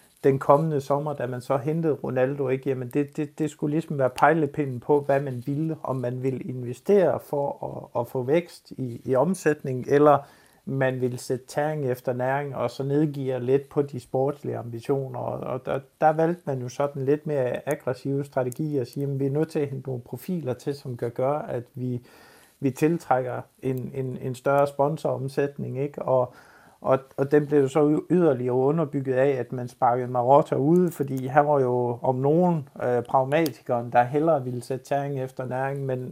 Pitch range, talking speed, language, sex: 130-145 Hz, 190 wpm, Danish, male